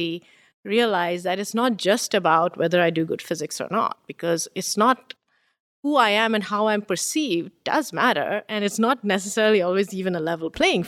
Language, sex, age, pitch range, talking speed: English, female, 30-49, 175-230 Hz, 190 wpm